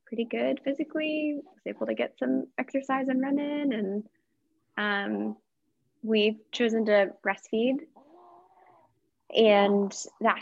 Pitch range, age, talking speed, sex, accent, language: 195-235 Hz, 20-39, 115 wpm, female, American, English